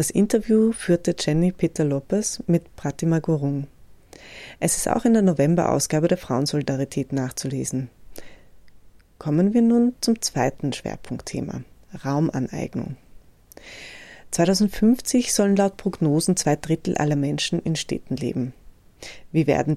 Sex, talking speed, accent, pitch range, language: female, 110 wpm, German, 145-180 Hz, German